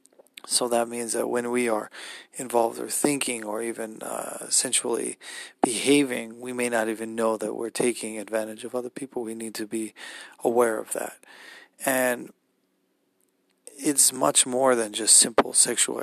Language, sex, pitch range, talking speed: English, male, 110-120 Hz, 155 wpm